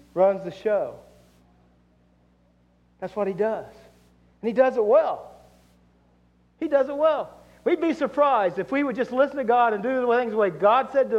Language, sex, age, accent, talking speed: English, male, 50-69, American, 190 wpm